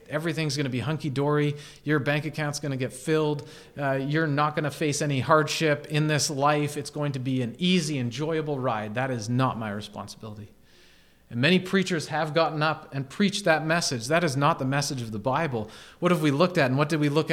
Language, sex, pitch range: English, male, 135-185 Hz